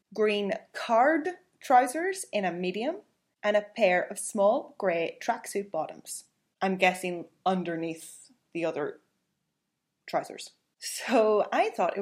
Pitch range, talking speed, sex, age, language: 180-235 Hz, 120 wpm, female, 20-39, English